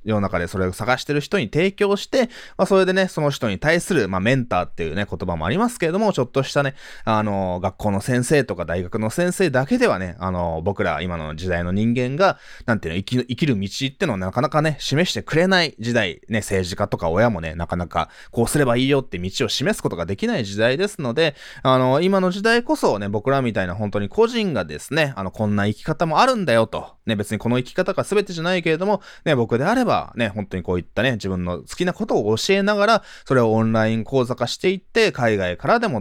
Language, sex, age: Japanese, male, 20-39